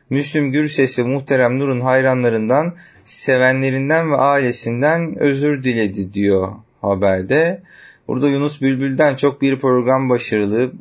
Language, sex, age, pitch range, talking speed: Turkish, male, 30-49, 115-155 Hz, 110 wpm